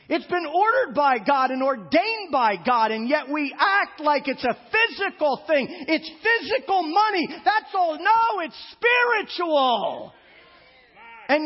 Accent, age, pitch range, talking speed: American, 40-59, 270-360 Hz, 140 wpm